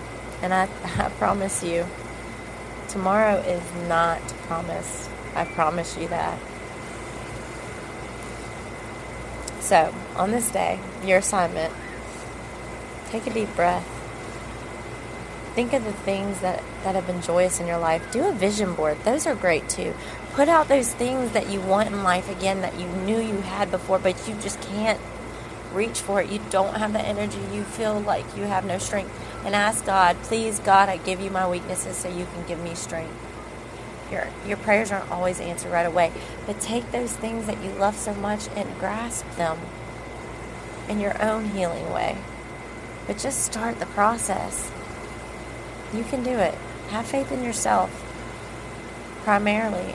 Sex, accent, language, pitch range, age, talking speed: female, American, English, 175-210 Hz, 20-39, 160 wpm